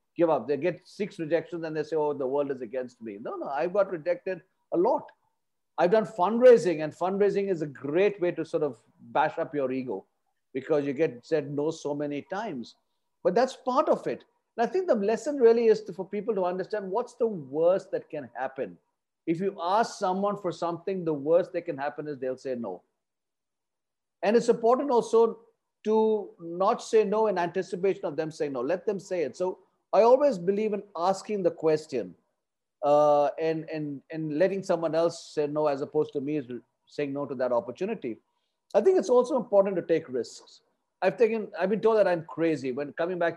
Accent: Indian